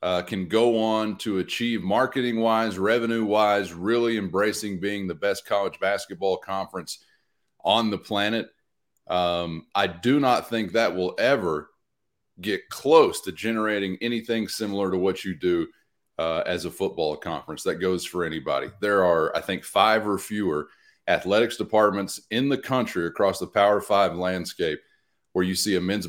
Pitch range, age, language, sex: 95-115 Hz, 30-49, English, male